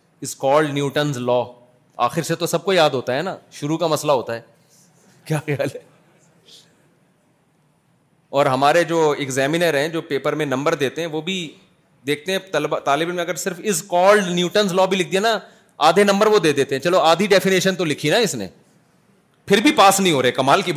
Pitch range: 155-210 Hz